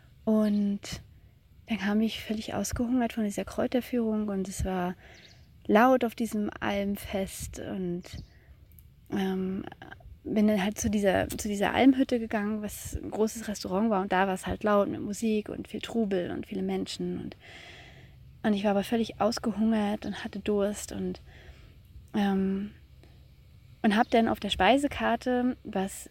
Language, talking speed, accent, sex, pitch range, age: German, 150 wpm, German, female, 190-225 Hz, 30-49